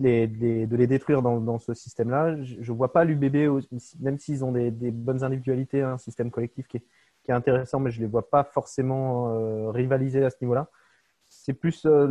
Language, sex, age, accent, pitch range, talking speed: French, male, 20-39, French, 115-140 Hz, 220 wpm